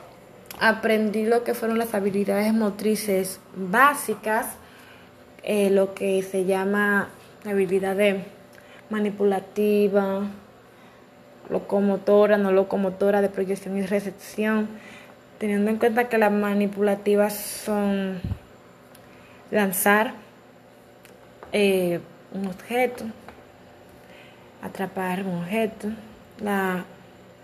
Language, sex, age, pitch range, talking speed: Spanish, female, 20-39, 190-215 Hz, 85 wpm